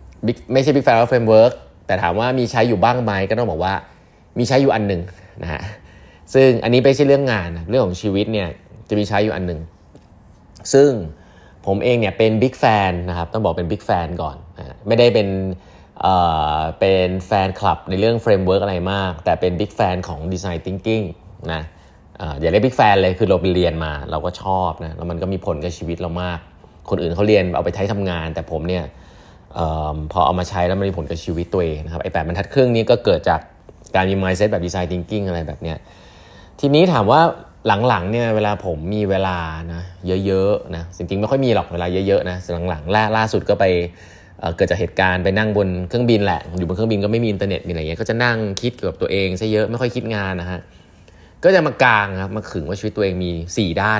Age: 20-39